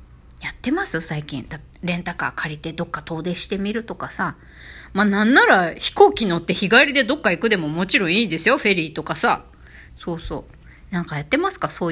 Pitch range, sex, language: 160-255 Hz, female, Japanese